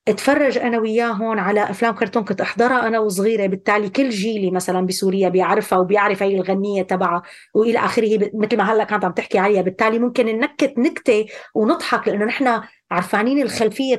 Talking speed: 170 wpm